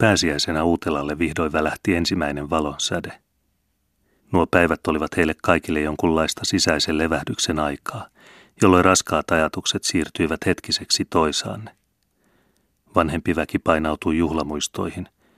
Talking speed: 100 wpm